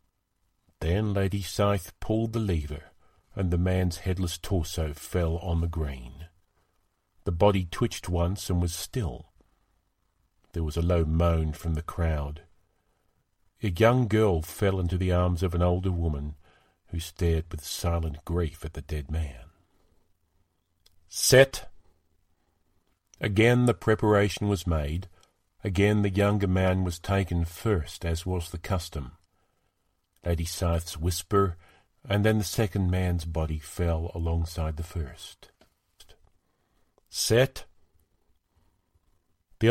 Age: 50-69